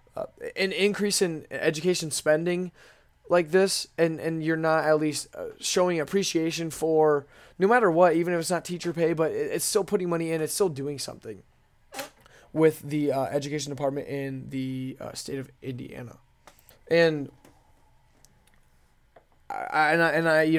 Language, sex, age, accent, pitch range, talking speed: English, male, 20-39, American, 140-170 Hz, 155 wpm